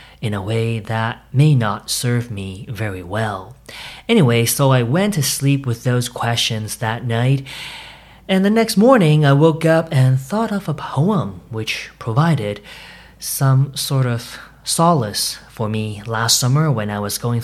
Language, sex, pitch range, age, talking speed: English, male, 105-135 Hz, 30-49, 160 wpm